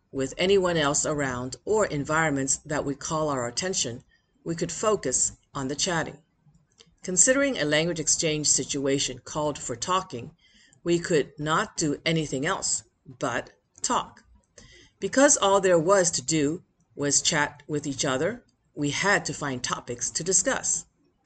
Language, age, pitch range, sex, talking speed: English, 50-69, 135-175 Hz, female, 145 wpm